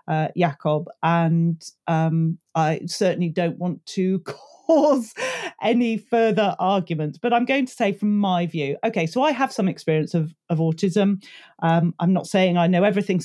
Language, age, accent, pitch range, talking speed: English, 40-59, British, 170-230 Hz, 170 wpm